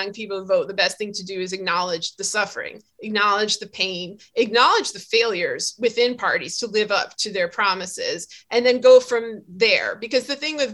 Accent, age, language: American, 30-49, English